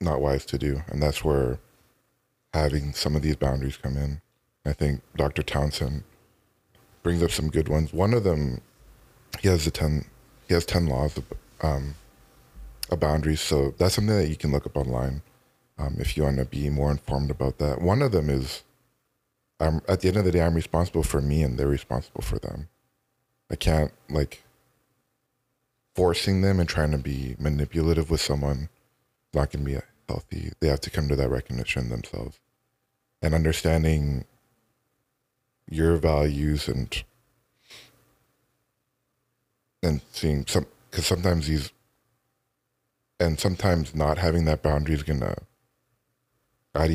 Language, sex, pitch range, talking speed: English, male, 70-85 Hz, 155 wpm